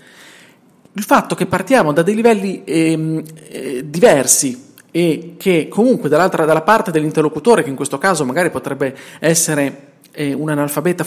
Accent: native